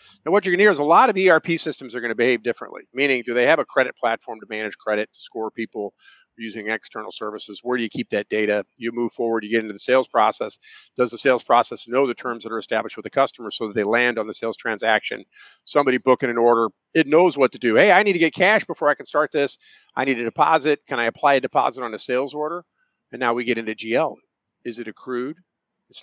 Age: 50-69